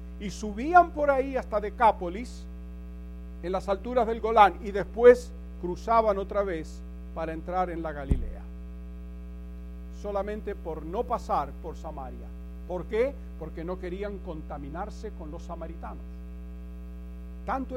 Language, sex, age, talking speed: English, male, 50-69, 125 wpm